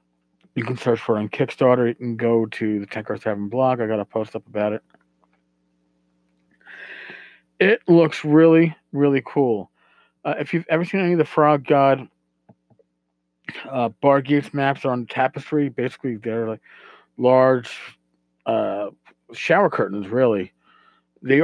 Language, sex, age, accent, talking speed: English, male, 40-59, American, 145 wpm